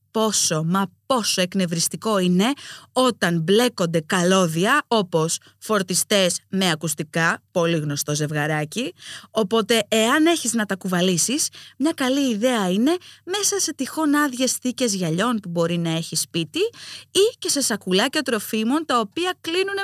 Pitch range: 175-275 Hz